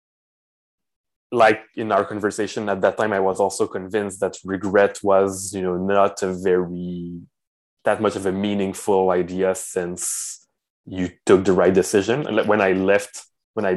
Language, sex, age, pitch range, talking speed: English, male, 20-39, 95-115 Hz, 160 wpm